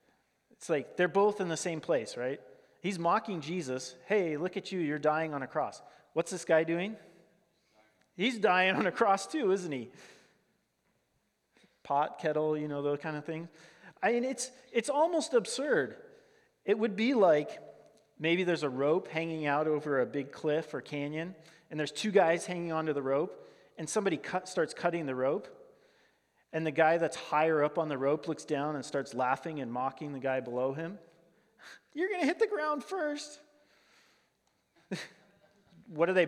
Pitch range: 150-190 Hz